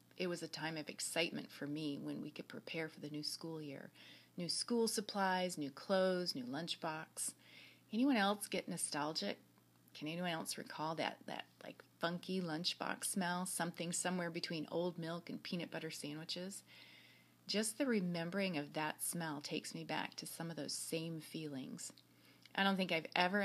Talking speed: 170 wpm